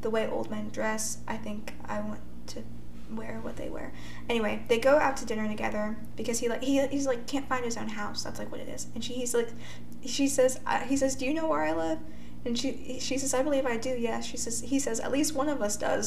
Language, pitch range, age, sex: English, 205-235 Hz, 10-29, female